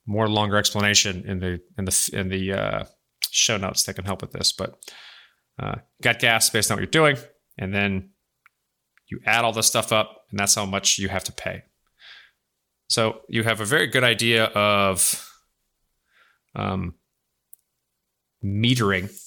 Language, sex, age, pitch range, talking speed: English, male, 30-49, 95-110 Hz, 165 wpm